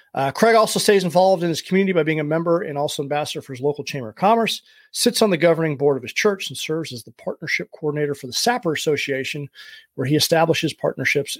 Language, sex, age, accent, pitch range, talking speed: English, male, 40-59, American, 145-205 Hz, 225 wpm